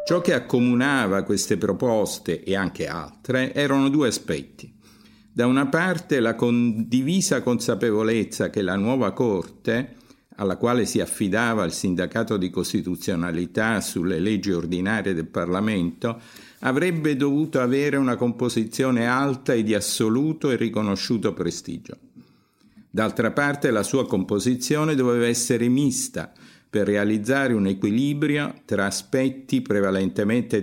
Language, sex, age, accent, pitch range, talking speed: Italian, male, 50-69, native, 105-135 Hz, 120 wpm